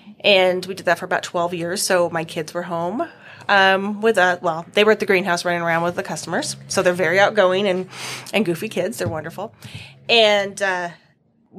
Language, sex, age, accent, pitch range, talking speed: English, female, 20-39, American, 160-195 Hz, 200 wpm